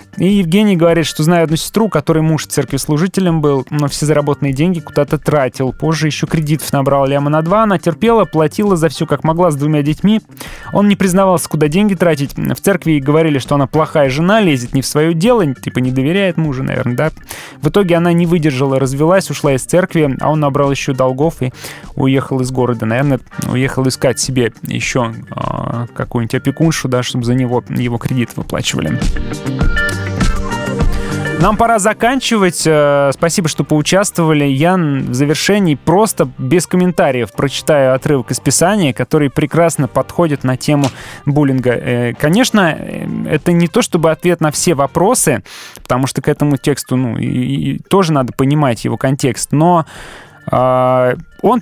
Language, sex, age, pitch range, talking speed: Russian, male, 20-39, 135-175 Hz, 155 wpm